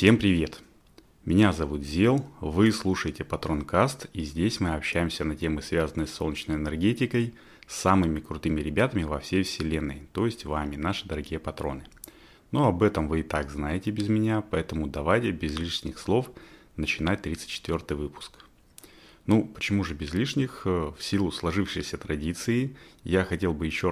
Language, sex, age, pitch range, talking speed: Russian, male, 30-49, 75-100 Hz, 155 wpm